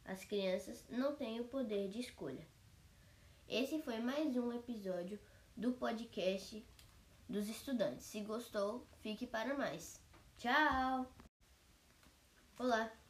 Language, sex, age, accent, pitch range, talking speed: Portuguese, female, 10-29, Brazilian, 195-255 Hz, 110 wpm